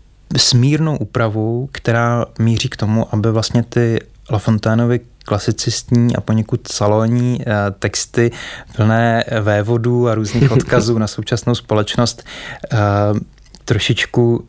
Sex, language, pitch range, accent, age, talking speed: male, Czech, 105-120 Hz, native, 20-39, 100 wpm